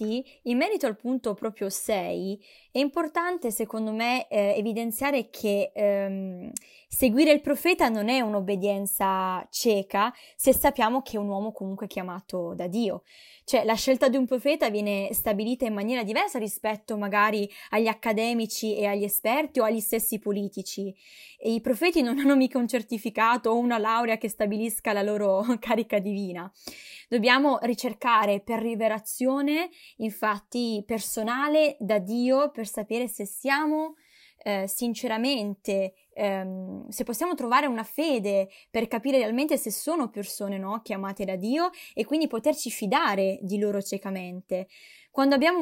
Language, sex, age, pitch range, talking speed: Italian, female, 20-39, 205-255 Hz, 140 wpm